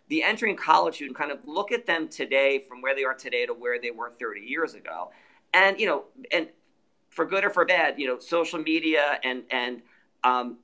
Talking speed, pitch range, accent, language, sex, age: 225 wpm, 130-165 Hz, American, English, male, 40-59